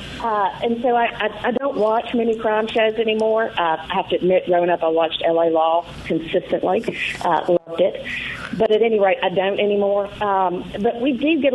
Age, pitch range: 50-69, 180-235 Hz